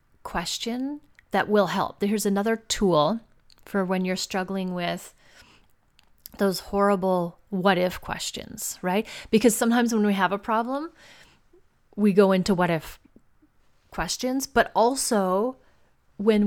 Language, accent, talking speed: English, American, 125 wpm